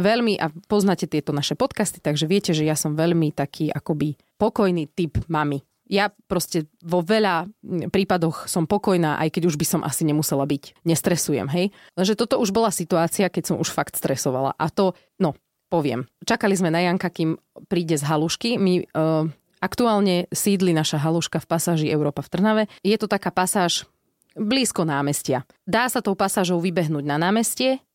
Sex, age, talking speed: female, 30-49, 170 wpm